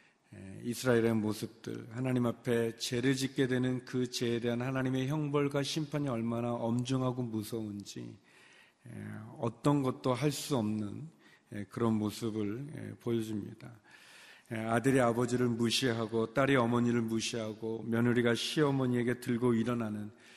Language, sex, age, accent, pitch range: Korean, male, 40-59, native, 110-130 Hz